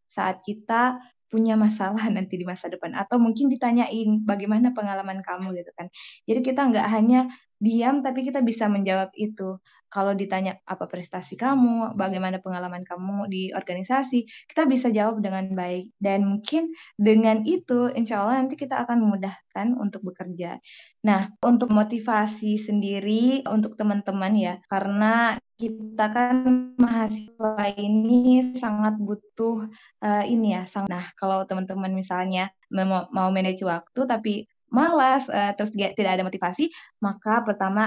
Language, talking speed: Indonesian, 135 wpm